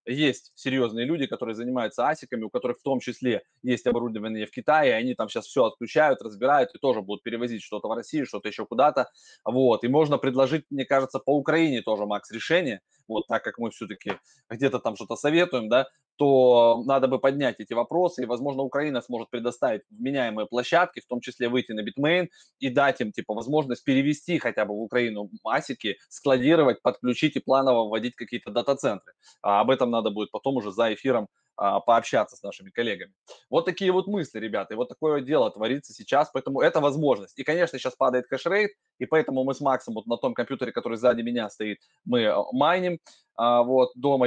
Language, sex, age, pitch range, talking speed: Russian, male, 20-39, 115-140 Hz, 190 wpm